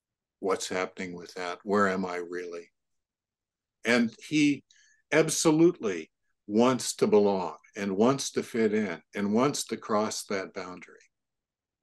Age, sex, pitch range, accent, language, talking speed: 50-69, male, 105-155 Hz, American, English, 125 wpm